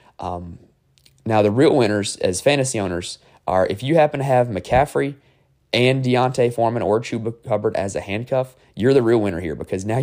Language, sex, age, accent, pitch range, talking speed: English, male, 20-39, American, 90-130 Hz, 185 wpm